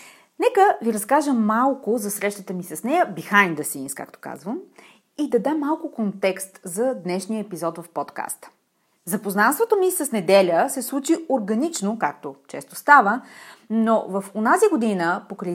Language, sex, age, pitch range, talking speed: Bulgarian, female, 30-49, 190-285 Hz, 150 wpm